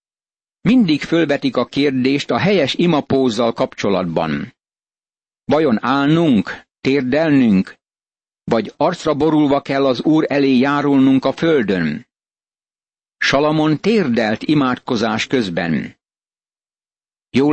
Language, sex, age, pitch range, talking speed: Hungarian, male, 50-69, 130-160 Hz, 90 wpm